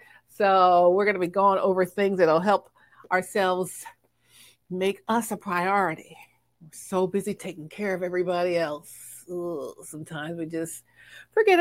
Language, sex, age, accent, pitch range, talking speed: English, female, 50-69, American, 175-240 Hz, 150 wpm